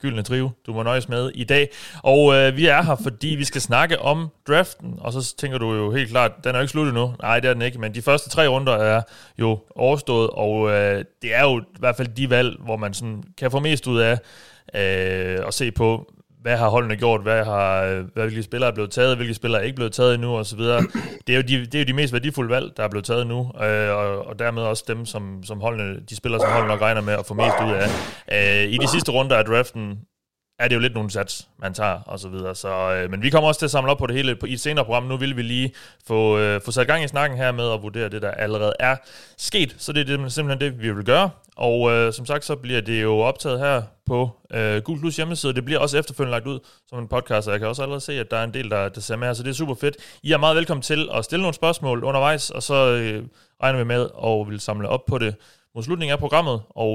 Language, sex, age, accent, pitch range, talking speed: Danish, male, 30-49, native, 110-135 Hz, 270 wpm